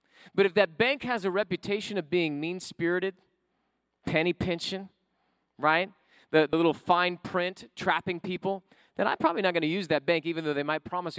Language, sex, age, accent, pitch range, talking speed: English, male, 40-59, American, 180-240 Hz, 180 wpm